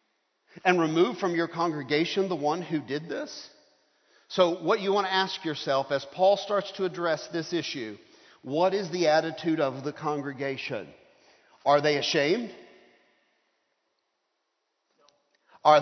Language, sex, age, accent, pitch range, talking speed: English, male, 50-69, American, 155-195 Hz, 135 wpm